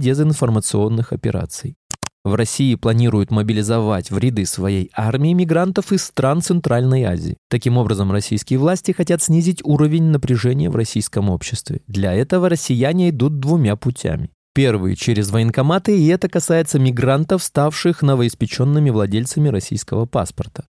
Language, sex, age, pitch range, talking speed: Russian, male, 20-39, 105-150 Hz, 130 wpm